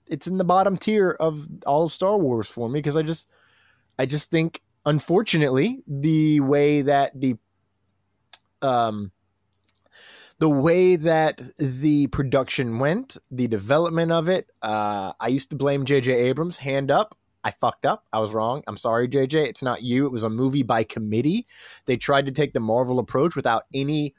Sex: male